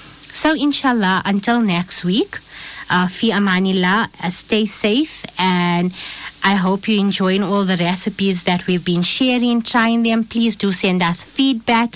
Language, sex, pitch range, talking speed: English, female, 180-220 Hz, 150 wpm